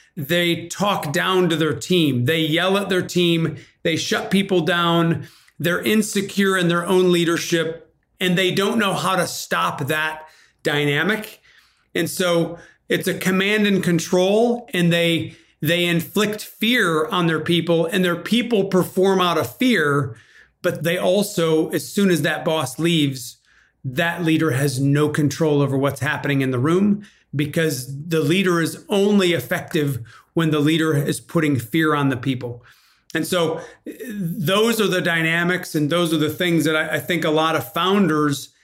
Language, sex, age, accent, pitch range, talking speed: English, male, 40-59, American, 155-180 Hz, 165 wpm